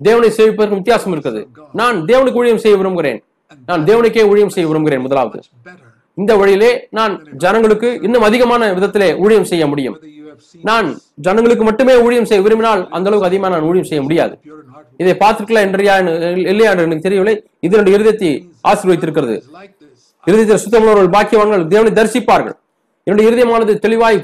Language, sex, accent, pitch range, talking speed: Tamil, male, native, 190-230 Hz, 140 wpm